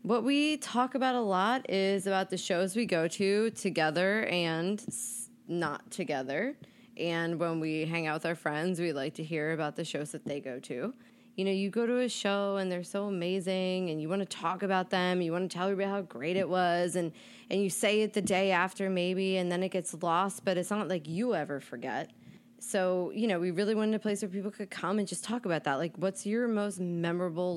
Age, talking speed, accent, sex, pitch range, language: 20-39, 230 wpm, American, female, 170-205 Hz, English